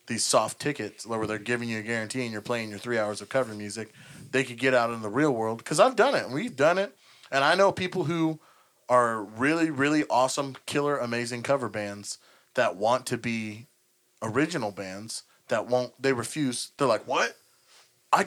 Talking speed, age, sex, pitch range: 195 wpm, 30-49, male, 115-145 Hz